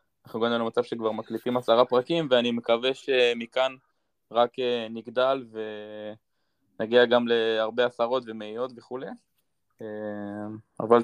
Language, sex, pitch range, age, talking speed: Hebrew, male, 115-130 Hz, 20-39, 110 wpm